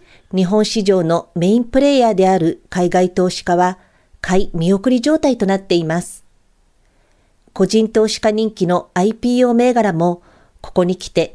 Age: 50-69